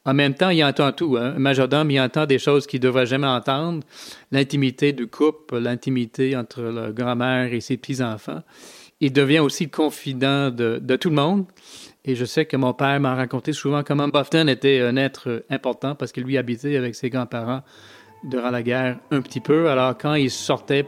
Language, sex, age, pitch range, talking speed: French, male, 30-49, 120-140 Hz, 200 wpm